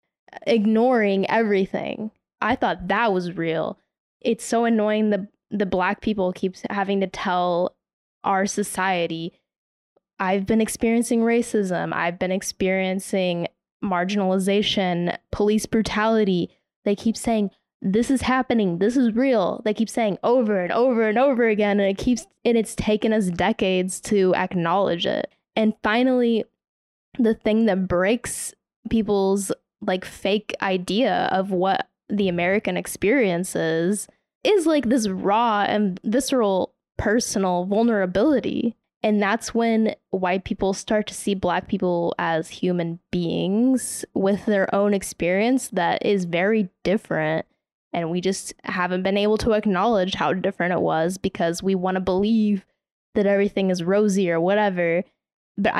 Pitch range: 185-225 Hz